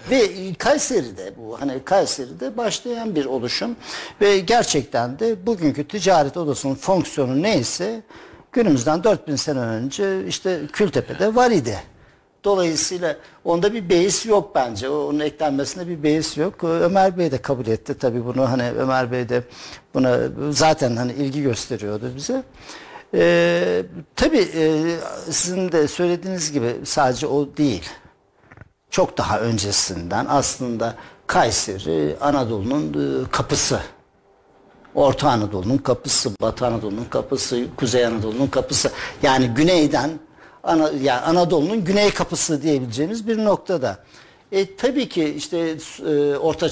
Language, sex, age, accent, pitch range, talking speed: Turkish, male, 60-79, native, 130-180 Hz, 115 wpm